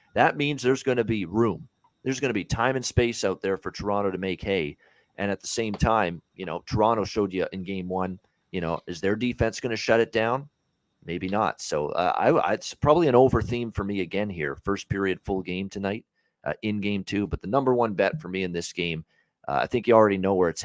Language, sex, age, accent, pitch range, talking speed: English, male, 40-59, American, 95-115 Hz, 245 wpm